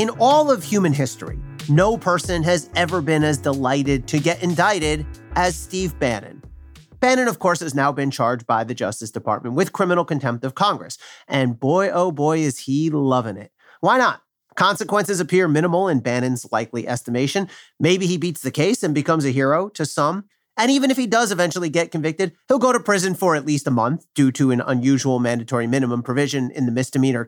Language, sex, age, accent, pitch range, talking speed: English, male, 40-59, American, 130-185 Hz, 195 wpm